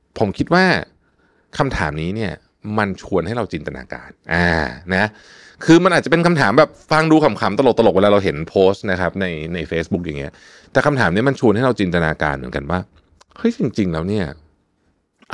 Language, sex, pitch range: Thai, male, 80-120 Hz